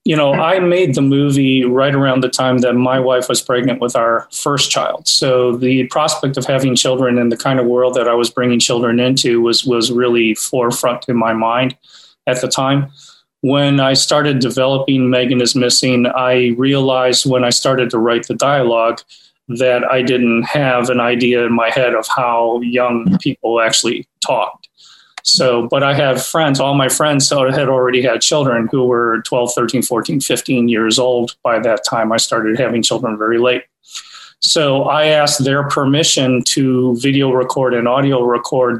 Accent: American